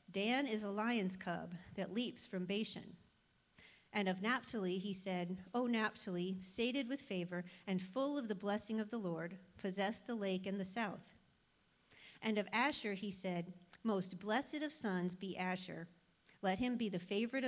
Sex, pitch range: female, 185-225 Hz